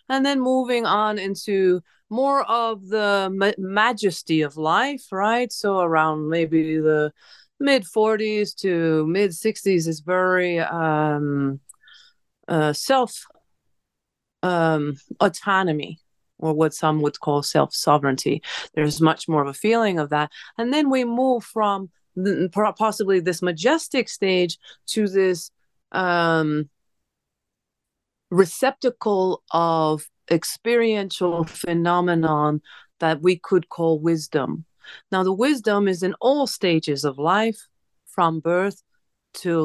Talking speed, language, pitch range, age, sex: 110 wpm, English, 155-205 Hz, 30-49, female